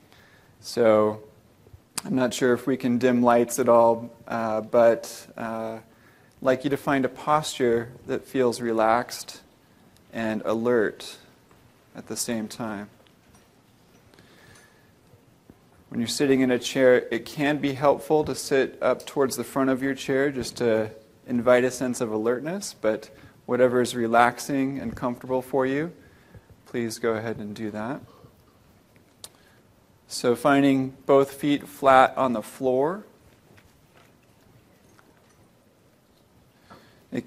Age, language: 30-49, English